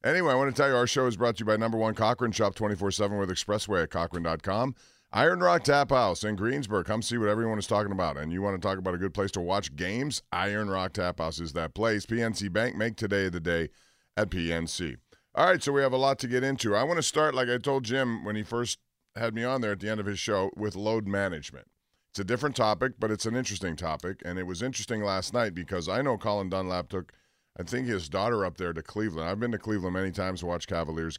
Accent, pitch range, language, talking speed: American, 95-115 Hz, English, 260 wpm